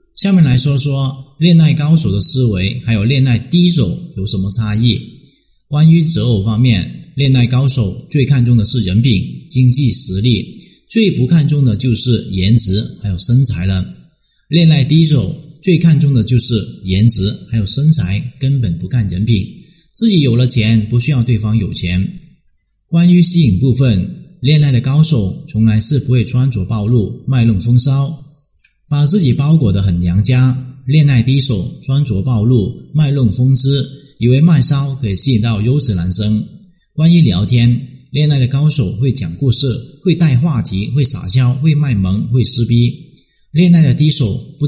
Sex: male